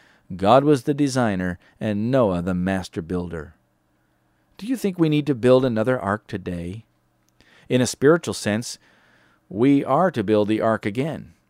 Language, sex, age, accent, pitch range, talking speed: English, male, 50-69, American, 100-145 Hz, 155 wpm